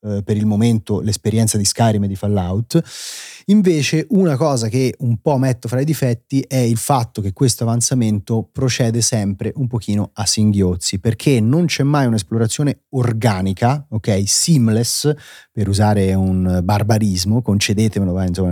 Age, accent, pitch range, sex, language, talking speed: 30-49, native, 110-130 Hz, male, Italian, 145 wpm